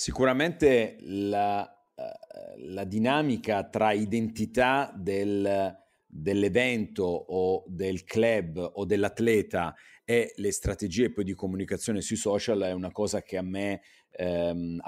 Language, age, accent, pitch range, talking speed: Italian, 40-59, native, 95-110 Hz, 105 wpm